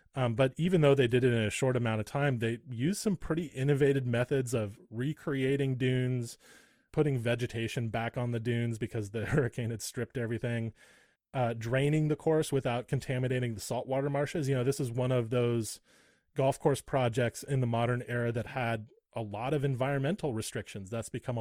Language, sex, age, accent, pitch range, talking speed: English, male, 20-39, American, 115-135 Hz, 185 wpm